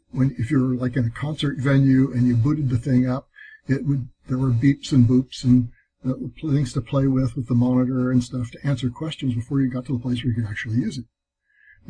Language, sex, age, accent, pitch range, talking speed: English, male, 60-79, American, 125-145 Hz, 245 wpm